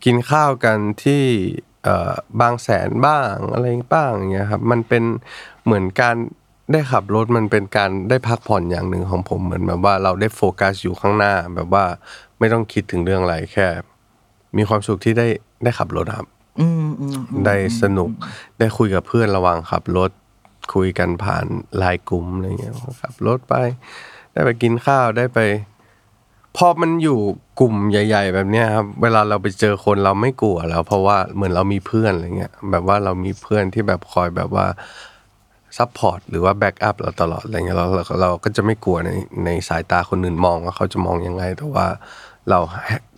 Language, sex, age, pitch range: Thai, male, 20-39, 95-115 Hz